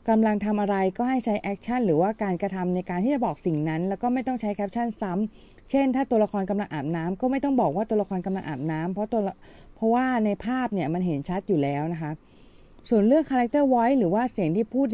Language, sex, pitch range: Thai, female, 175-225 Hz